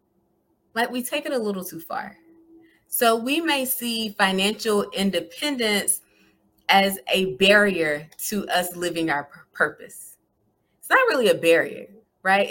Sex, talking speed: female, 135 wpm